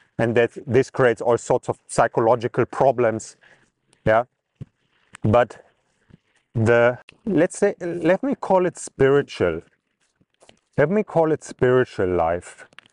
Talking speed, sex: 115 wpm, male